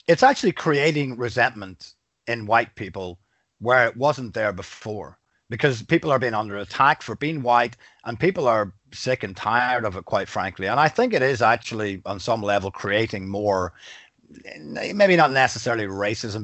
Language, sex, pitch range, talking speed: English, male, 105-135 Hz, 170 wpm